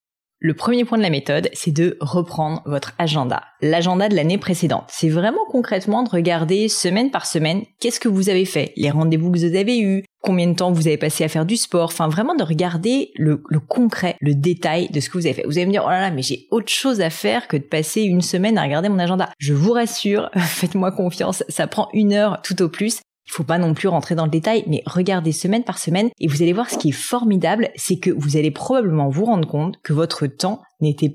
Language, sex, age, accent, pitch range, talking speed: French, female, 30-49, French, 155-195 Hz, 245 wpm